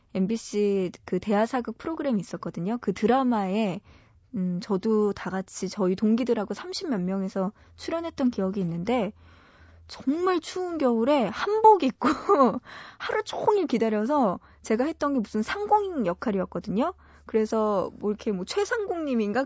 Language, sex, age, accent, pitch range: Korean, female, 20-39, native, 195-280 Hz